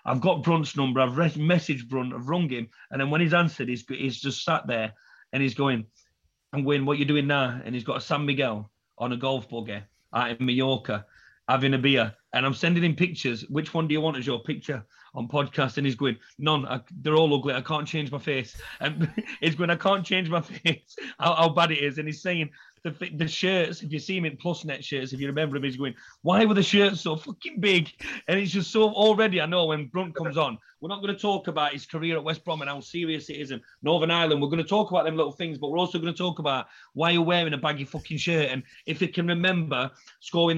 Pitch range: 135-170 Hz